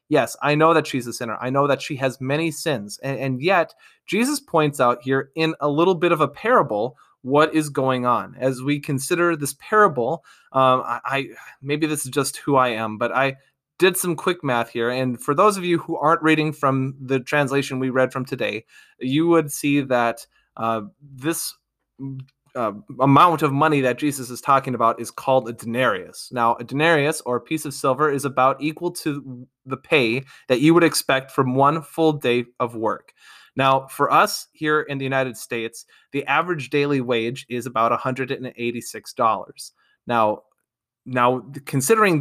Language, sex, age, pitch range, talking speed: English, male, 20-39, 125-155 Hz, 185 wpm